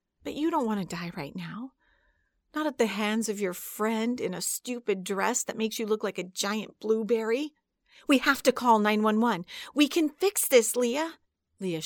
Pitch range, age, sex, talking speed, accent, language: 215-300 Hz, 40-59, female, 190 wpm, American, English